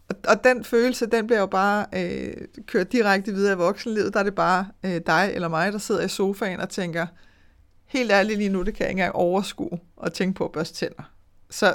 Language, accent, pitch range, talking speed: Danish, native, 175-225 Hz, 225 wpm